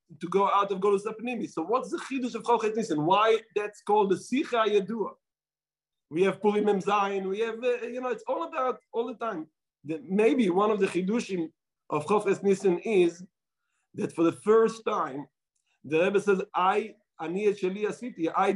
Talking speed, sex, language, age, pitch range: 180 wpm, male, English, 50-69, 170-225 Hz